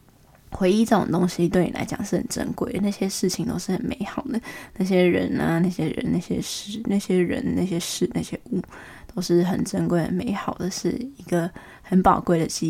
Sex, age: female, 20-39